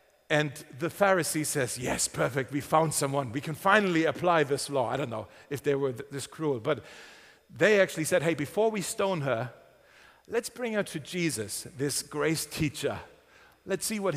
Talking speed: 180 wpm